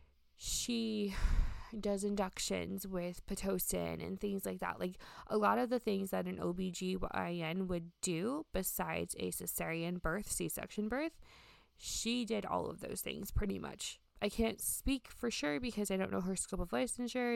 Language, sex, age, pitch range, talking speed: English, female, 20-39, 170-220 Hz, 165 wpm